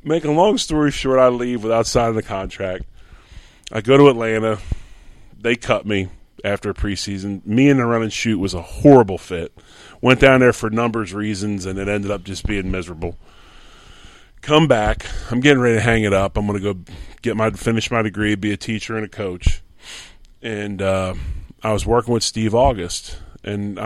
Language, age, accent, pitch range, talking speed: English, 30-49, American, 95-115 Hz, 195 wpm